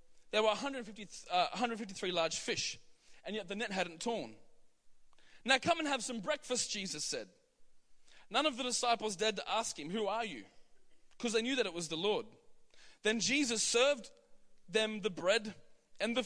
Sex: male